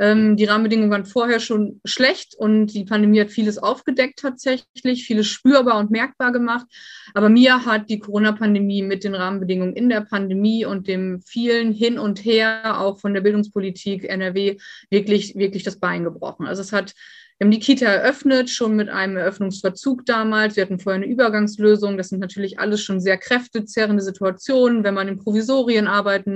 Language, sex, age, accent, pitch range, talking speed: German, female, 30-49, German, 205-245 Hz, 175 wpm